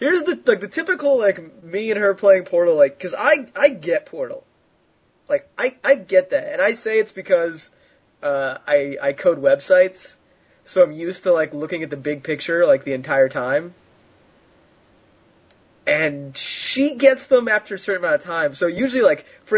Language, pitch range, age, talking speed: English, 170-275 Hz, 20-39, 185 wpm